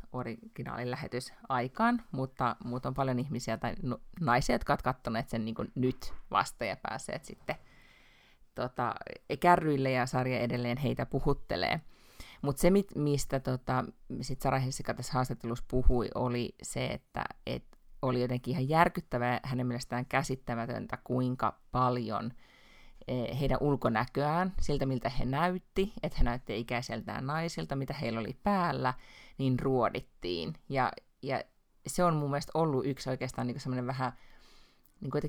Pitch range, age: 120-140 Hz, 30-49